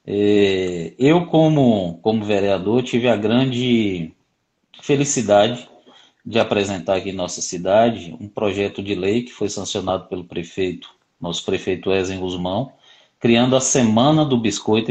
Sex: male